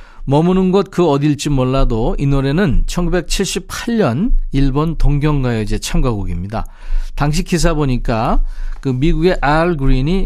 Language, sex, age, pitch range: Korean, male, 40-59, 115-165 Hz